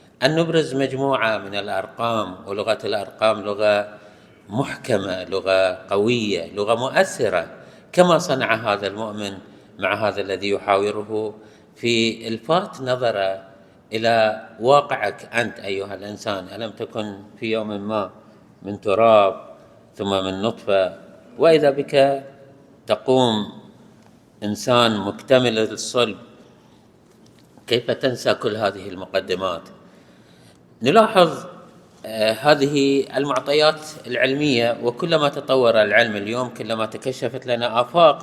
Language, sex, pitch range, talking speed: Arabic, male, 105-135 Hz, 95 wpm